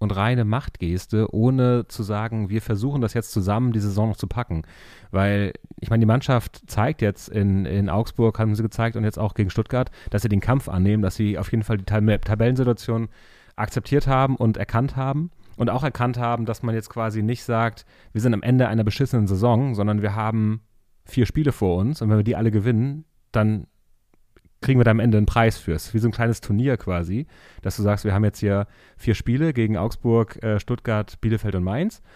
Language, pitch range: German, 105-120 Hz